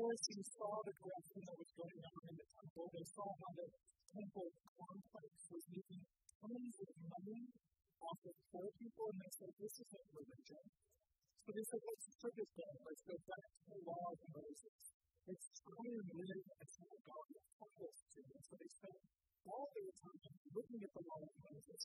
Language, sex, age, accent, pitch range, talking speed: English, female, 50-69, American, 165-205 Hz, 185 wpm